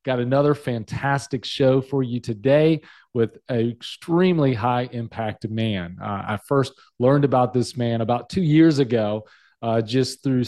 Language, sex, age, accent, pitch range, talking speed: English, male, 40-59, American, 120-140 Hz, 150 wpm